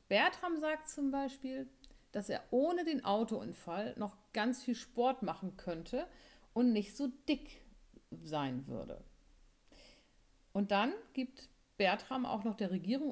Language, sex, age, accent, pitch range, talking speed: German, female, 50-69, German, 180-255 Hz, 135 wpm